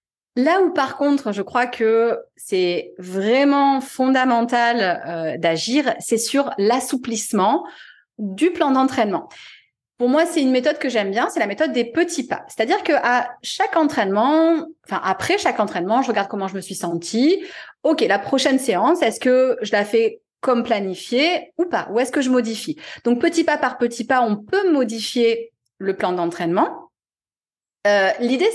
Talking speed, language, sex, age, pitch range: 165 wpm, French, female, 30-49, 215-295 Hz